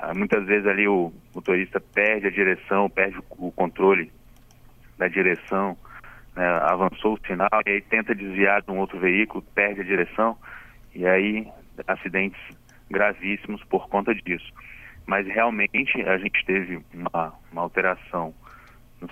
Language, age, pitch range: Portuguese, 30-49, 95-115 Hz